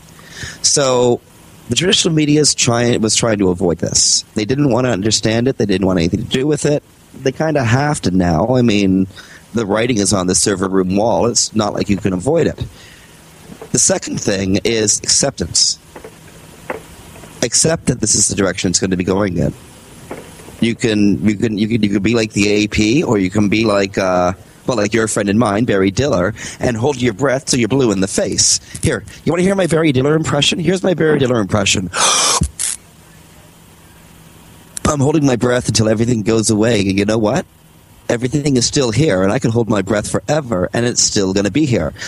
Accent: American